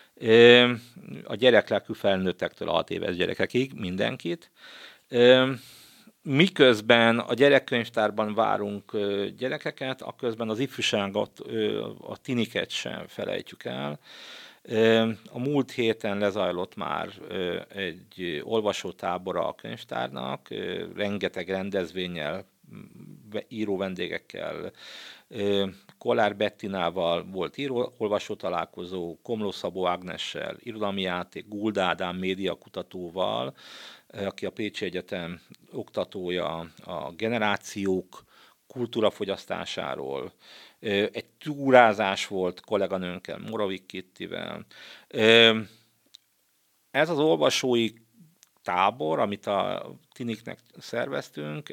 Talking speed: 75 wpm